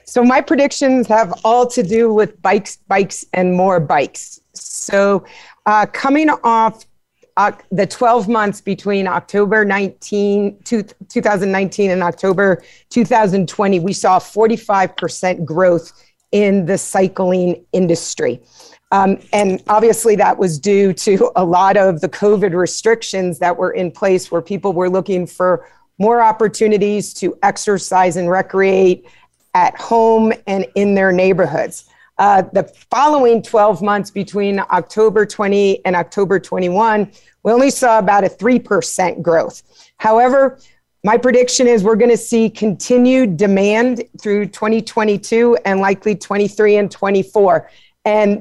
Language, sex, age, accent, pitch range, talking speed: English, female, 40-59, American, 190-225 Hz, 135 wpm